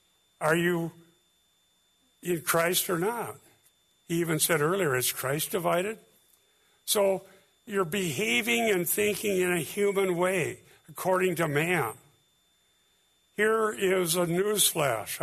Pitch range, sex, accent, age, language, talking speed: 145-190 Hz, male, American, 60-79, English, 115 wpm